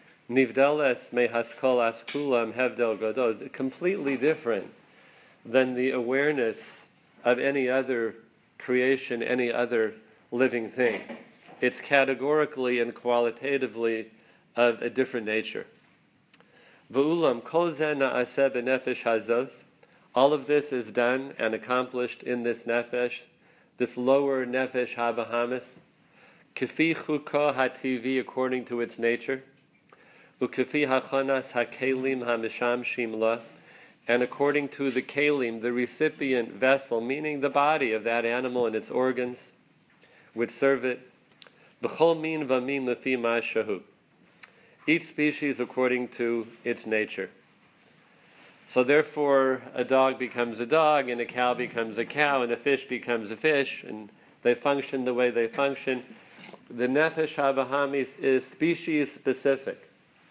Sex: male